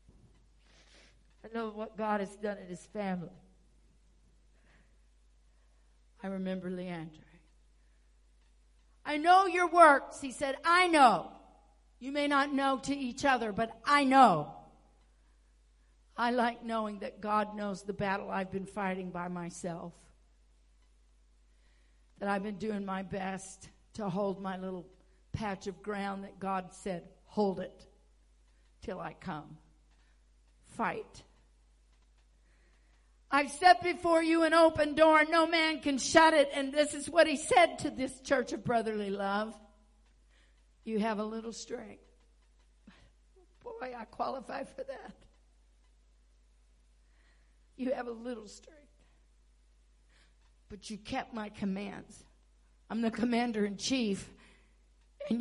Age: 60-79